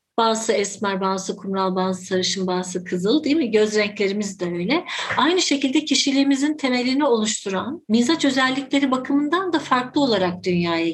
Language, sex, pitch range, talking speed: Turkish, female, 195-255 Hz, 145 wpm